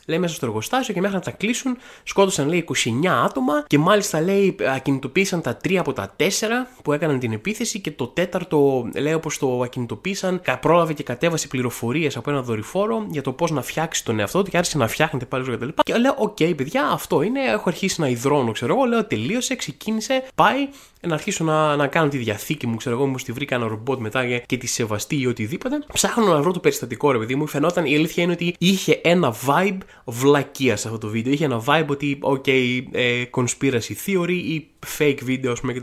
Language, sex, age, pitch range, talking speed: Greek, male, 20-39, 130-185 Hz, 210 wpm